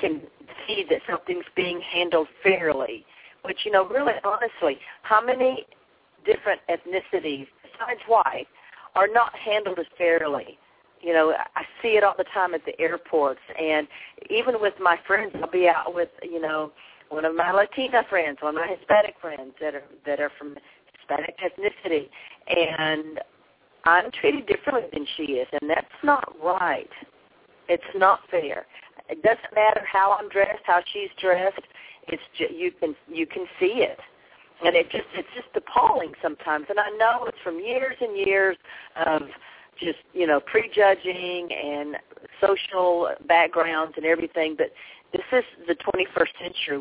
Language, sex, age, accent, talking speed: English, female, 50-69, American, 160 wpm